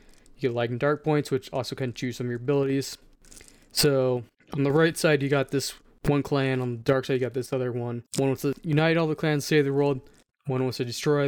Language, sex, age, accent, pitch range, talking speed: English, male, 20-39, American, 130-150 Hz, 250 wpm